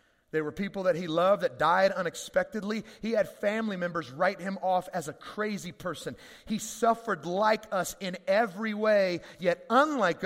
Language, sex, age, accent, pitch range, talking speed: English, male, 30-49, American, 185-225 Hz, 170 wpm